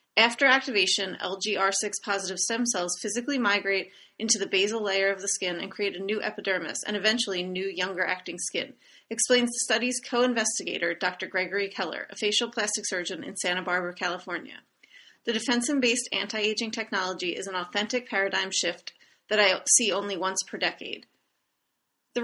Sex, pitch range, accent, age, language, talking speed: female, 190-225 Hz, American, 30-49, English, 155 wpm